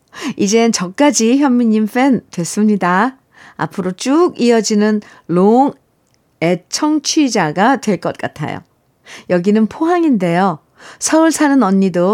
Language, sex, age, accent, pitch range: Korean, female, 50-69, native, 170-265 Hz